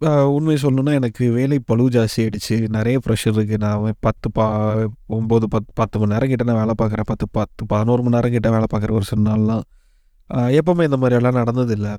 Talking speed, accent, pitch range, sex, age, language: 185 wpm, native, 110-130 Hz, male, 30-49, Tamil